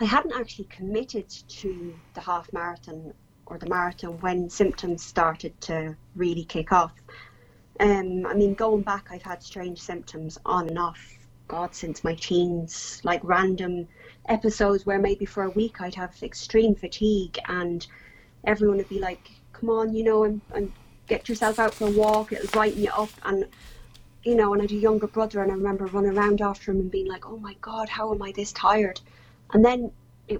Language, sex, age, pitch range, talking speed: English, female, 30-49, 175-205 Hz, 190 wpm